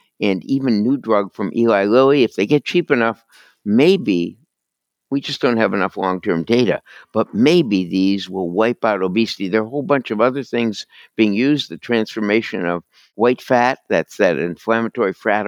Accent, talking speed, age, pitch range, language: American, 180 wpm, 60-79, 105-130 Hz, English